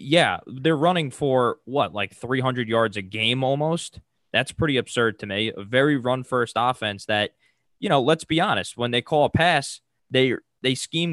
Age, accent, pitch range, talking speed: 20-39, American, 110-140 Hz, 185 wpm